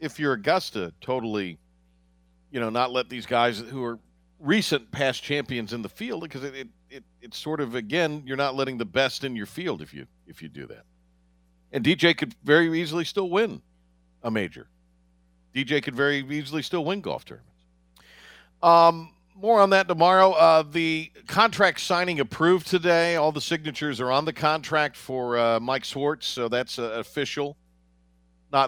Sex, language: male, English